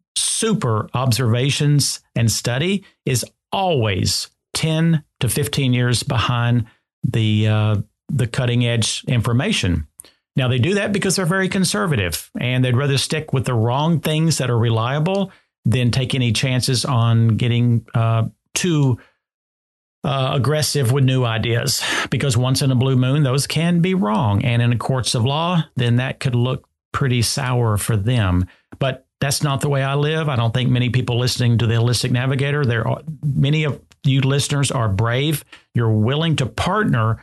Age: 50-69